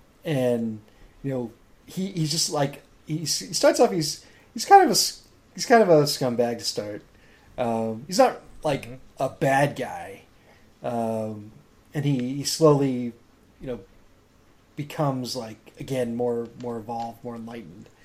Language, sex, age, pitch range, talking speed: English, male, 30-49, 115-145 Hz, 145 wpm